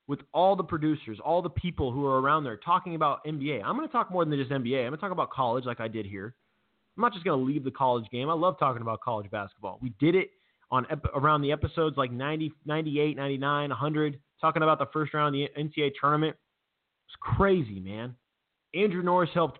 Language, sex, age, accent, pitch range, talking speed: English, male, 20-39, American, 130-155 Hz, 230 wpm